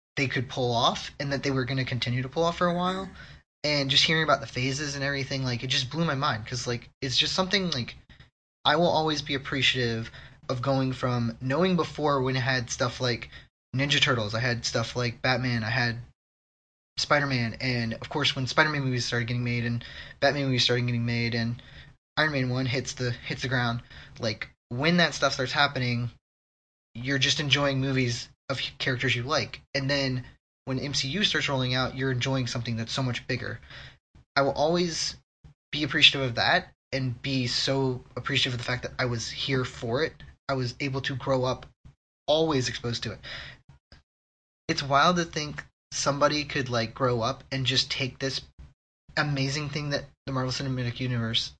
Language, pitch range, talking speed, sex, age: English, 120-140 Hz, 190 wpm, male, 20-39